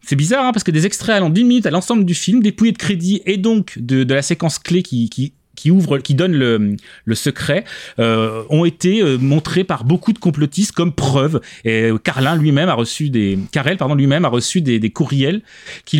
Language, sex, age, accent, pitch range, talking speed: French, male, 30-49, French, 135-185 Hz, 215 wpm